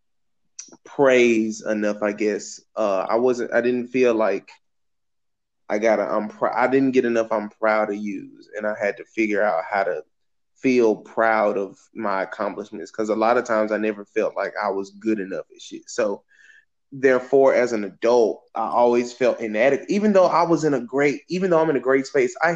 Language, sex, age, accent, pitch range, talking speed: English, male, 20-39, American, 115-165 Hz, 200 wpm